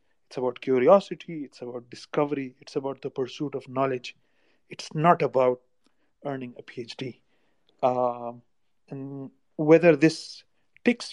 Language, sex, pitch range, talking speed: Urdu, male, 130-165 Hz, 125 wpm